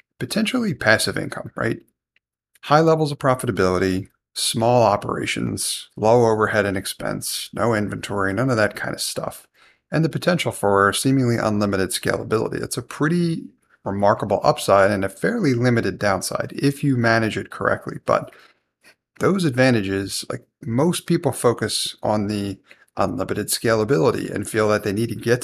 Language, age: English, 30-49